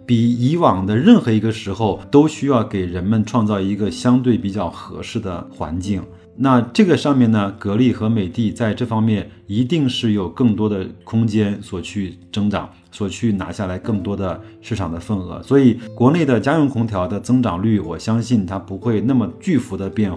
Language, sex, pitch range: Chinese, male, 100-120 Hz